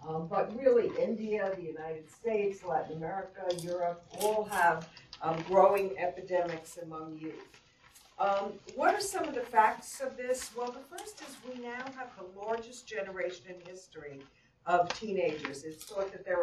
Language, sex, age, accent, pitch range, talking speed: English, female, 60-79, American, 170-225 Hz, 155 wpm